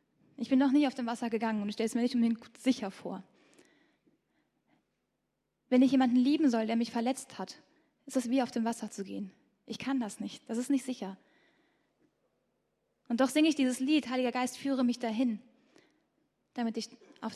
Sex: female